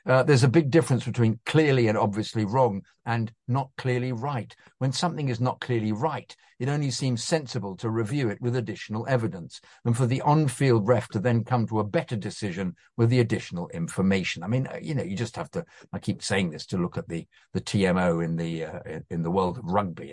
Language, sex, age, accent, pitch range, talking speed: English, male, 50-69, British, 120-170 Hz, 215 wpm